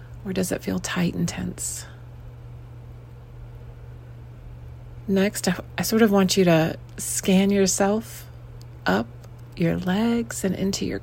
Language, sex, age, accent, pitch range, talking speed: English, female, 30-49, American, 120-180 Hz, 120 wpm